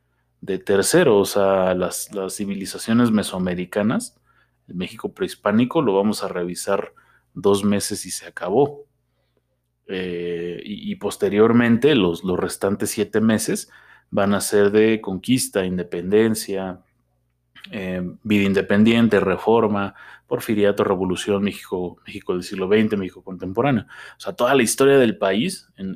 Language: Spanish